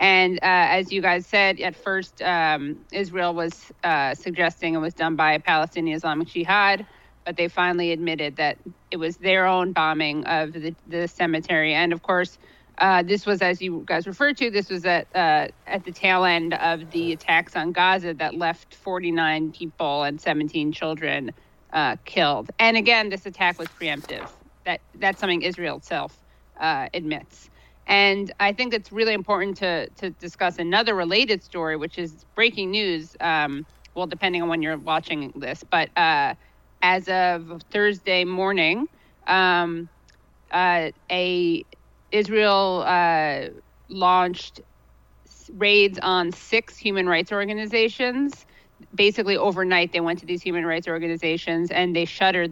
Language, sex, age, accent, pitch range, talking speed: English, female, 30-49, American, 165-195 Hz, 155 wpm